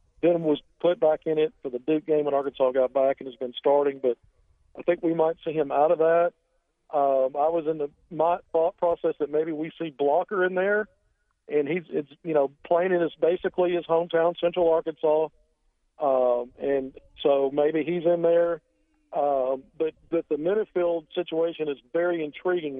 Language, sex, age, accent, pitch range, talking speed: English, male, 50-69, American, 145-170 Hz, 190 wpm